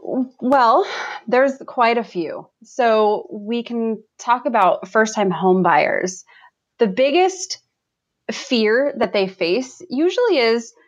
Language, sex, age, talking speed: English, female, 20-39, 120 wpm